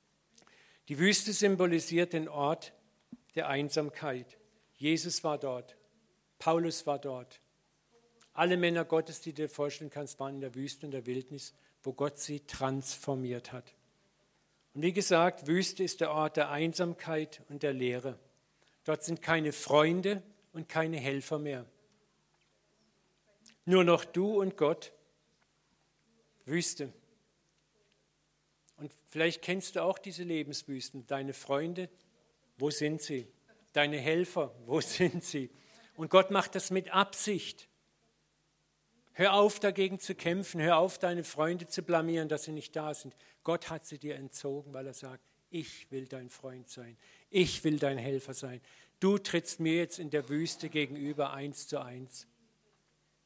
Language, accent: German, German